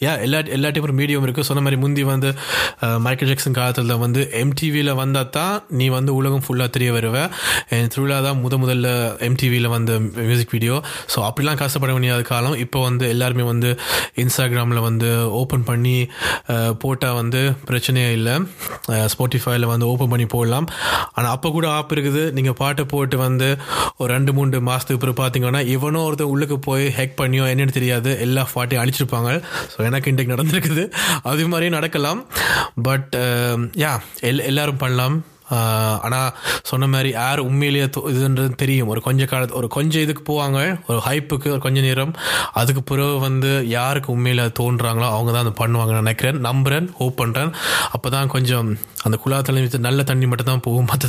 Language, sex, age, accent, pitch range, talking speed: Tamil, male, 20-39, native, 120-140 Hz, 110 wpm